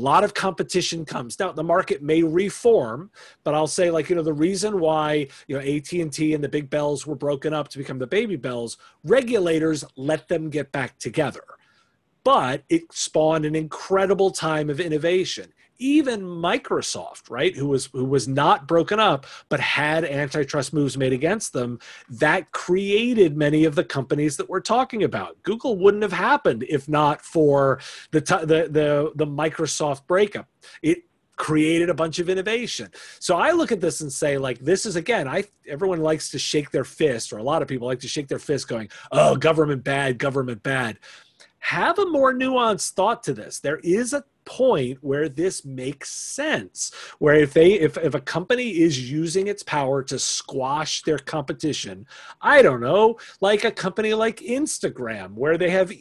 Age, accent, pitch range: 30-49, American, 145-200 Hz